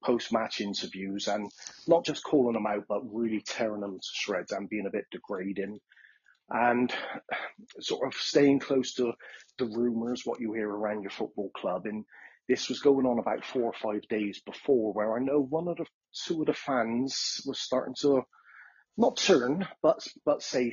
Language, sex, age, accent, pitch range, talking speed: English, male, 30-49, British, 105-125 Hz, 180 wpm